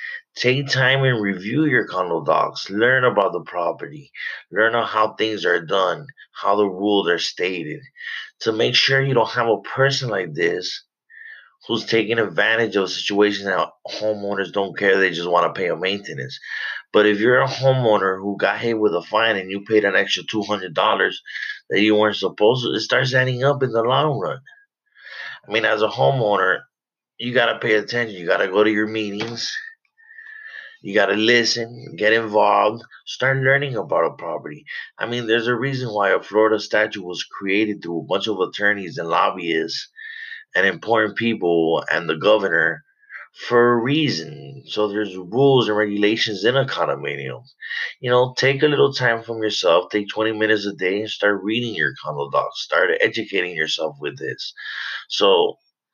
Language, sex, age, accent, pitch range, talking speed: English, male, 30-49, American, 105-145 Hz, 175 wpm